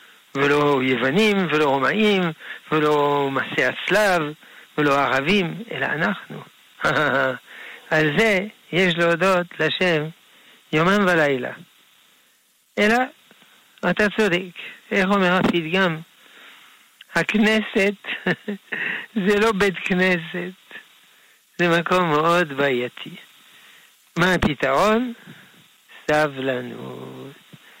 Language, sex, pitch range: Hebrew, male, 145-195 Hz